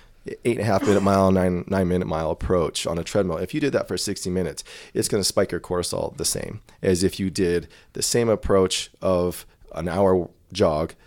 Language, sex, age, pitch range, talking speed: English, male, 20-39, 90-105 Hz, 215 wpm